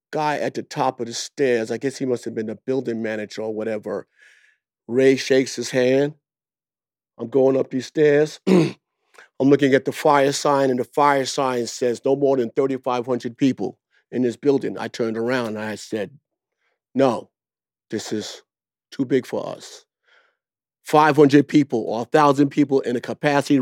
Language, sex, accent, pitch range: English, male, American, 115-140 Hz